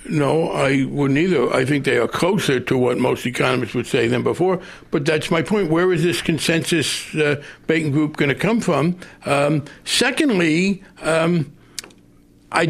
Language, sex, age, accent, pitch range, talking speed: English, male, 60-79, American, 145-190 Hz, 170 wpm